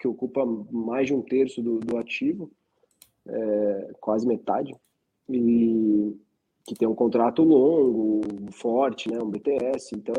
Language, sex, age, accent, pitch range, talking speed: Portuguese, male, 20-39, Brazilian, 115-140 Hz, 135 wpm